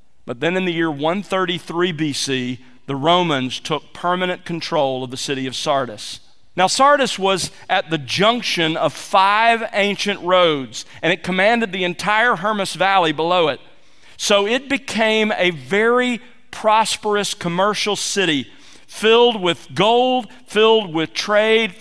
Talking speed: 140 wpm